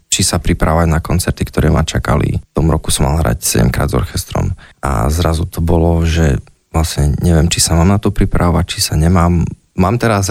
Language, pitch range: Slovak, 80-95 Hz